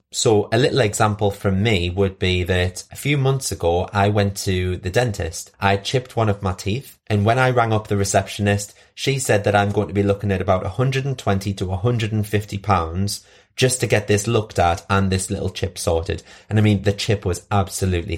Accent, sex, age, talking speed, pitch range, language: British, male, 30-49, 210 wpm, 95-110 Hz, English